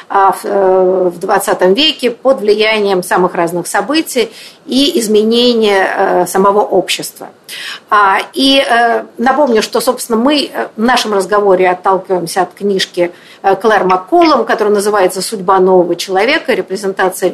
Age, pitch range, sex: 50-69, 195-275 Hz, female